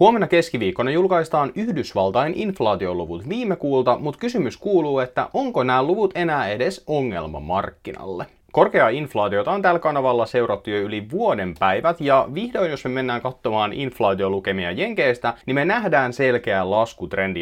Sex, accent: male, native